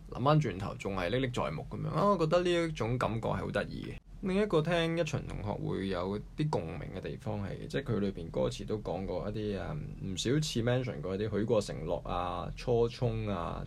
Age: 20-39